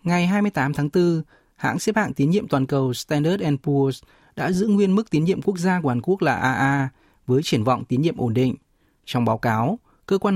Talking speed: 220 wpm